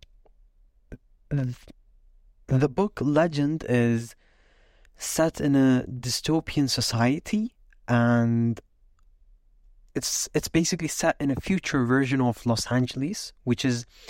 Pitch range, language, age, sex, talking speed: 115-135 Hz, English, 20-39, male, 100 wpm